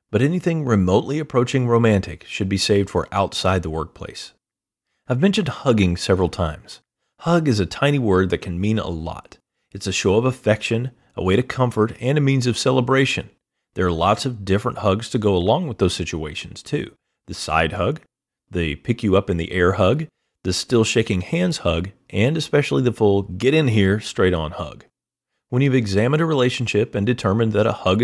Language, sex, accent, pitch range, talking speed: English, male, American, 90-125 Hz, 170 wpm